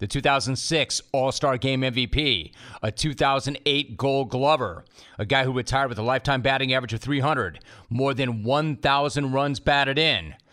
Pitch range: 125-150 Hz